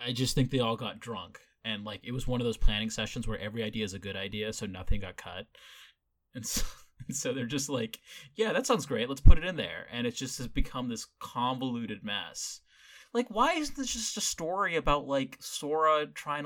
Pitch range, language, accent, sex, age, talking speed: 110-145 Hz, English, American, male, 20-39, 220 wpm